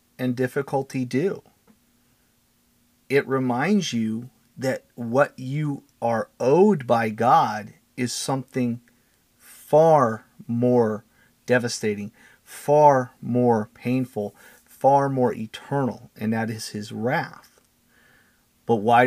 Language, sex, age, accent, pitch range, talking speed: English, male, 40-59, American, 115-135 Hz, 100 wpm